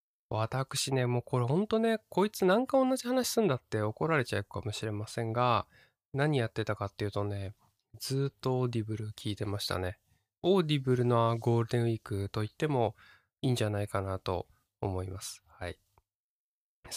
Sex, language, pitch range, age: male, Japanese, 105-140 Hz, 20-39